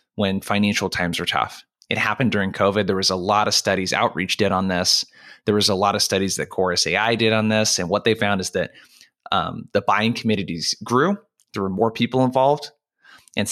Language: English